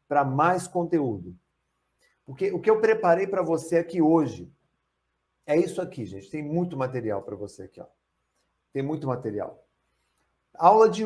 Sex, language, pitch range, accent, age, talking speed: male, Portuguese, 155-200 Hz, Brazilian, 50-69, 150 wpm